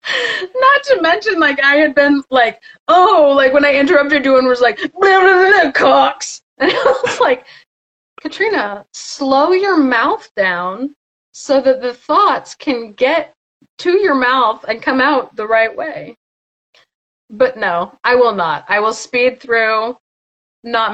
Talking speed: 150 wpm